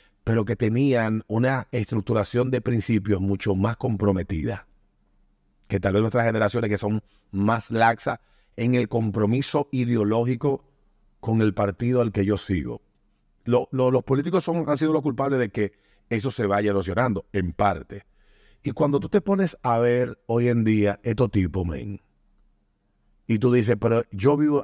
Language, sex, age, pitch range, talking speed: Spanish, male, 50-69, 100-120 Hz, 150 wpm